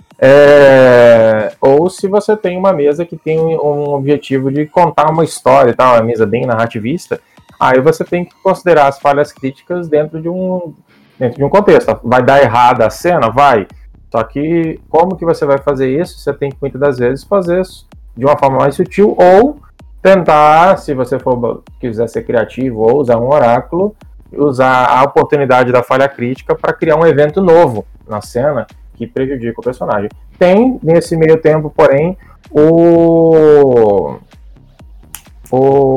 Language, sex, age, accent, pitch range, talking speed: Portuguese, male, 20-39, Brazilian, 125-165 Hz, 165 wpm